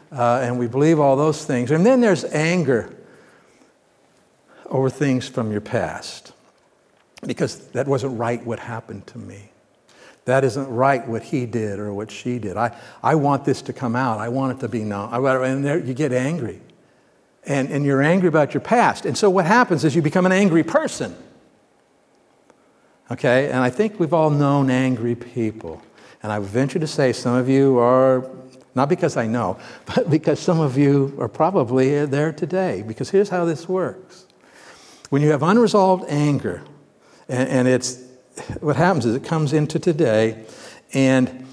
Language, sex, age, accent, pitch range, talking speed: English, male, 60-79, American, 120-150 Hz, 180 wpm